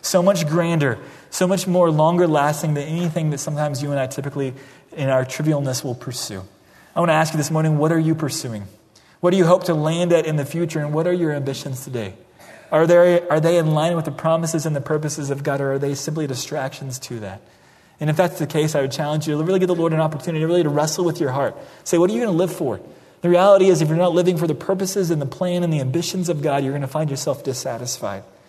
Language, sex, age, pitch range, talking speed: English, male, 30-49, 140-170 Hz, 255 wpm